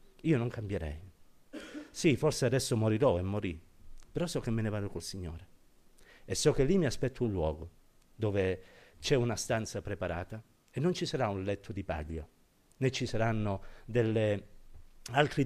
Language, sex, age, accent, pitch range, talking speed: Italian, male, 50-69, native, 90-125 Hz, 165 wpm